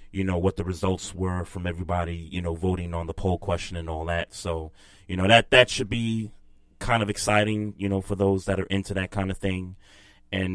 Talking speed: 230 wpm